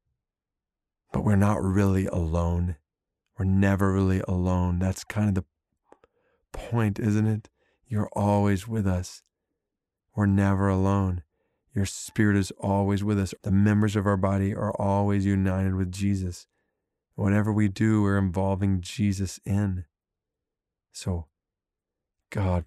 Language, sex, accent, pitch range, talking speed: English, male, American, 90-105 Hz, 125 wpm